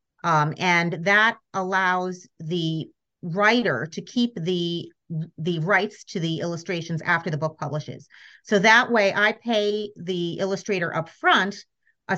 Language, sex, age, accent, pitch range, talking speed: English, female, 40-59, American, 170-210 Hz, 140 wpm